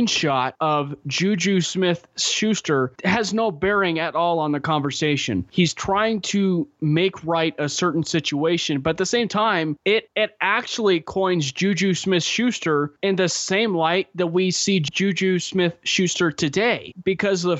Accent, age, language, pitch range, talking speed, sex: American, 20-39, English, 140-170 Hz, 160 wpm, male